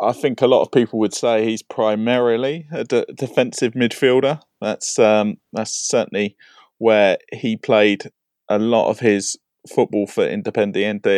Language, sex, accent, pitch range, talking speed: English, male, British, 100-125 Hz, 150 wpm